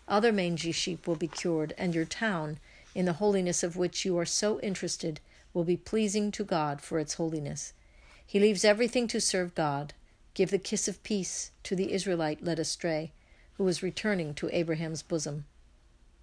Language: English